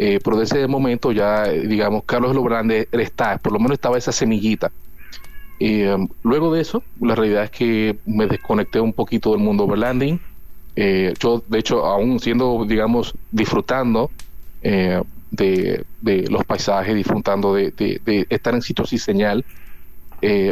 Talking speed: 165 wpm